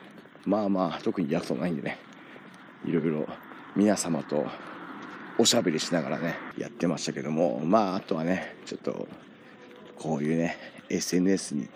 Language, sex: Japanese, male